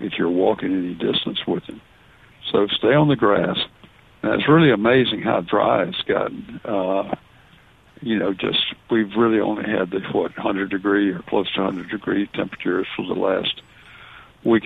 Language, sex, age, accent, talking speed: English, male, 60-79, American, 170 wpm